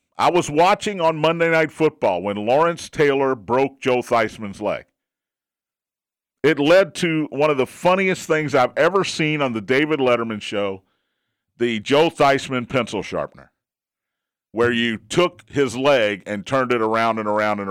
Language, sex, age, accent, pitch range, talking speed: English, male, 50-69, American, 130-170 Hz, 160 wpm